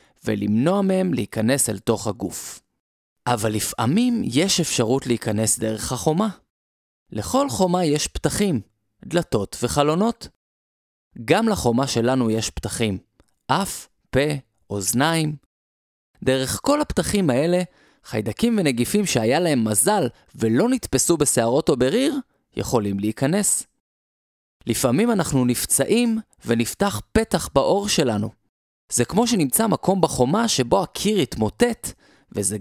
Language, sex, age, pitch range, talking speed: Hebrew, male, 20-39, 110-185 Hz, 110 wpm